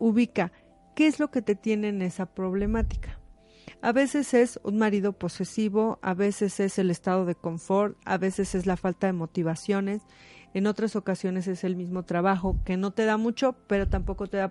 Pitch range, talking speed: 190-230 Hz, 190 wpm